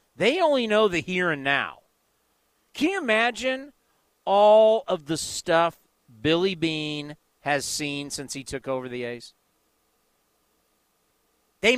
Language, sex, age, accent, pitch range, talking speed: English, male, 40-59, American, 160-240 Hz, 125 wpm